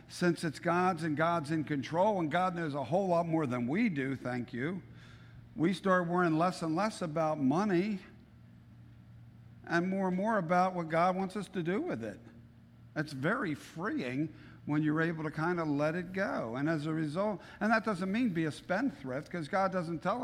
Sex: male